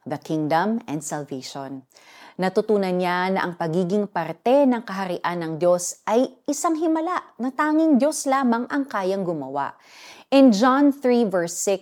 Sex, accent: female, native